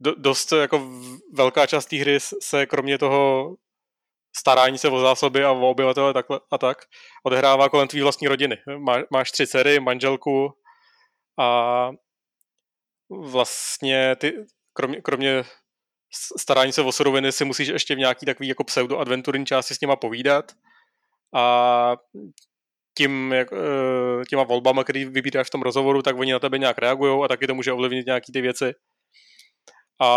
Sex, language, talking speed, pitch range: male, Czech, 155 wpm, 130-145 Hz